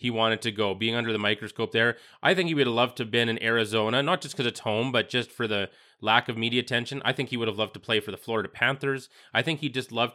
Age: 20-39